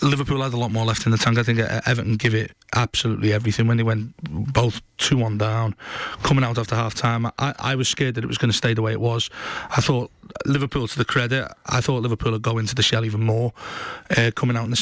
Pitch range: 115-125 Hz